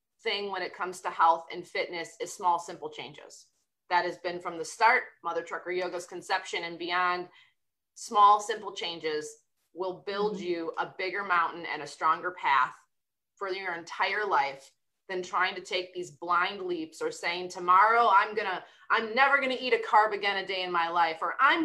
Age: 20-39